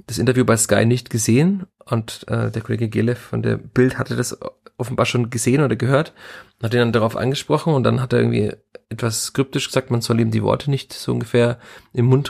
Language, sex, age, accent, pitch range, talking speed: German, male, 30-49, German, 115-130 Hz, 215 wpm